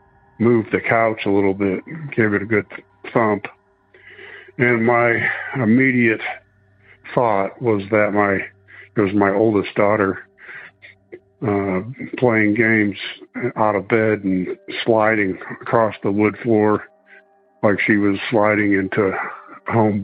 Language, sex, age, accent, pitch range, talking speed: English, male, 60-79, American, 100-120 Hz, 125 wpm